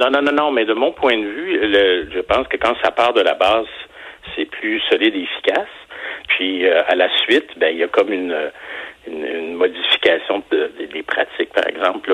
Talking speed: 220 wpm